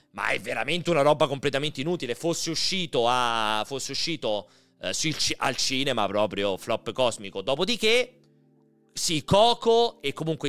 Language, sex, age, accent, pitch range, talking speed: Italian, male, 30-49, native, 100-155 Hz, 150 wpm